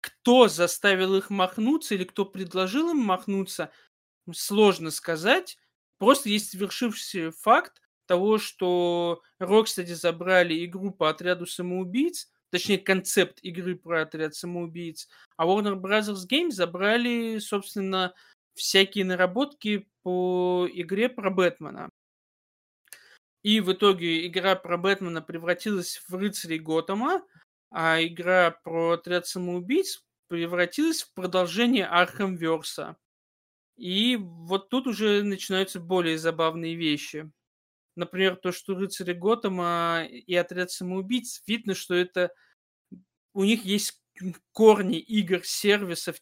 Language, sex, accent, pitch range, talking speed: Russian, male, native, 170-205 Hz, 110 wpm